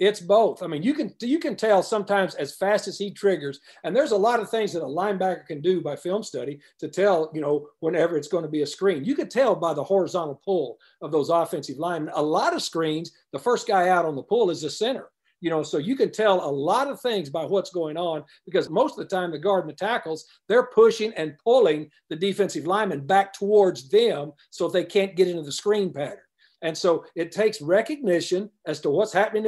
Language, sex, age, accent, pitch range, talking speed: English, male, 50-69, American, 160-210 Hz, 235 wpm